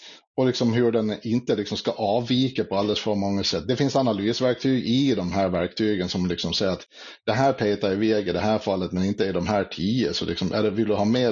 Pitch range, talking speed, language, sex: 100-120 Hz, 240 wpm, Swedish, male